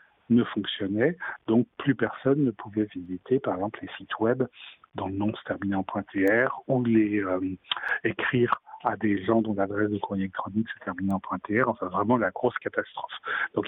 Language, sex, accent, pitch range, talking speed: French, male, French, 100-115 Hz, 195 wpm